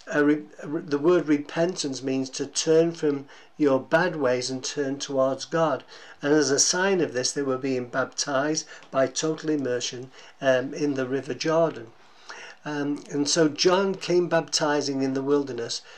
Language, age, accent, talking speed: English, 60-79, British, 155 wpm